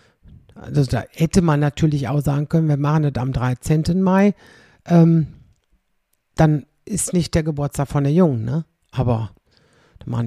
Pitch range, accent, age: 130-165 Hz, German, 60-79